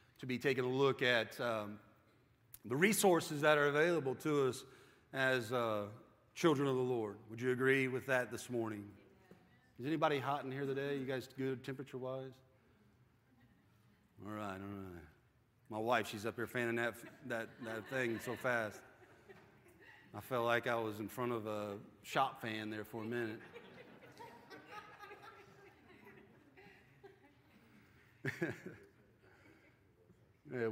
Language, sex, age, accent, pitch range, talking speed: English, male, 40-59, American, 115-150 Hz, 135 wpm